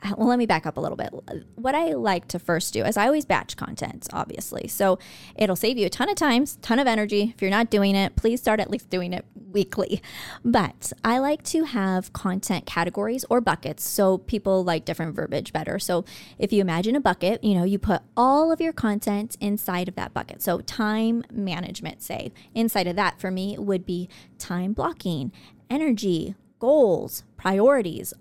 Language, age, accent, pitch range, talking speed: English, 20-39, American, 190-230 Hz, 195 wpm